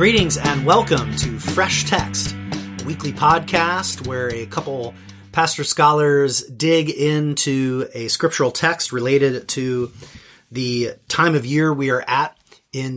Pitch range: 125-155 Hz